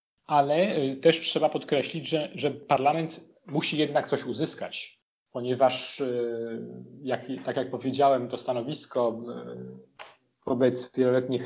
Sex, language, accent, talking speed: male, Polish, native, 100 wpm